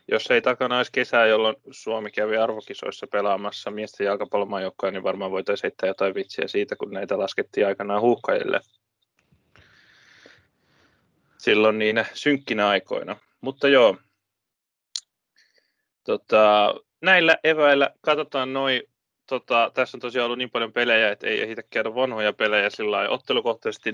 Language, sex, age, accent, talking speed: Finnish, male, 20-39, native, 135 wpm